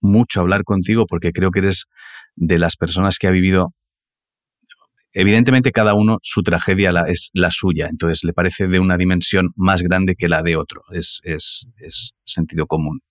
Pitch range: 85-100 Hz